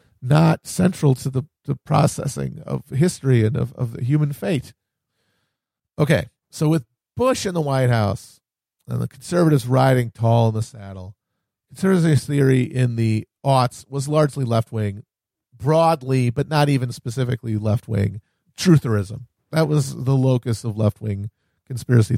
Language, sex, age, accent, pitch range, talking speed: English, male, 40-59, American, 110-145 Hz, 140 wpm